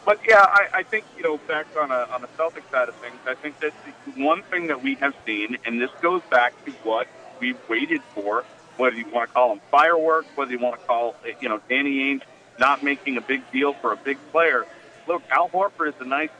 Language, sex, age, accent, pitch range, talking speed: English, male, 40-59, American, 125-165 Hz, 250 wpm